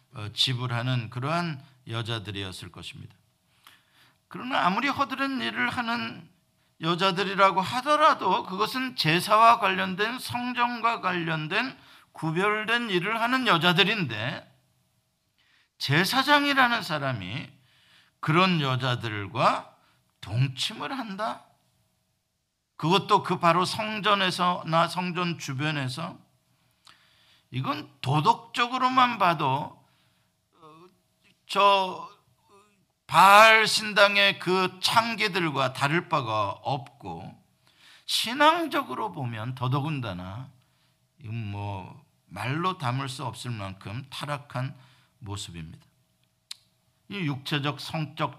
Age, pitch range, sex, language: 50-69, 130-215 Hz, male, Korean